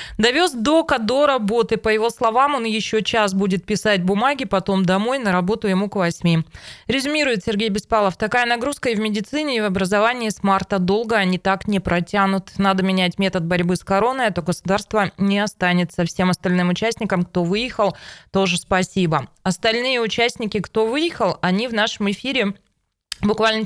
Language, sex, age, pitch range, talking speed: Russian, female, 20-39, 195-230 Hz, 165 wpm